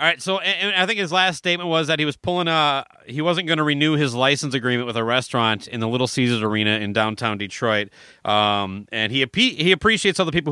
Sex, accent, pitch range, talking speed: male, American, 125-170 Hz, 245 wpm